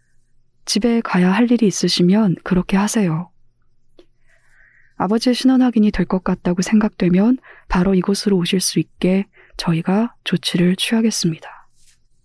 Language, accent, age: Korean, native, 20-39